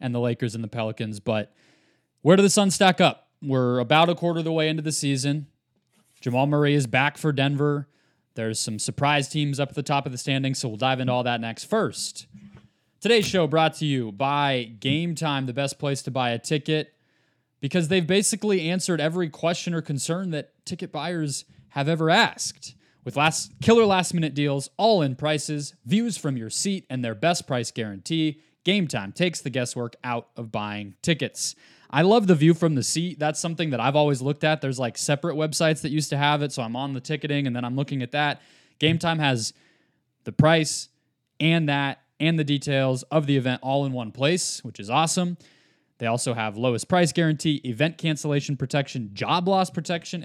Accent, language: American, English